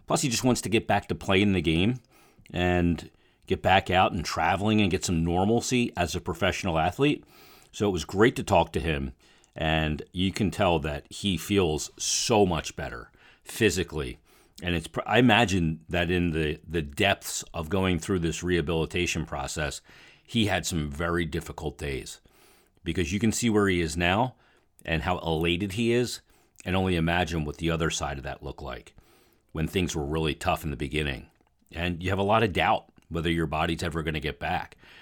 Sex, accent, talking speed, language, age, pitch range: male, American, 190 wpm, English, 40-59, 80-105 Hz